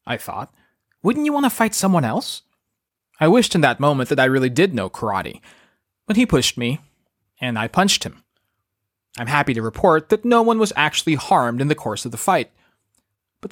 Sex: male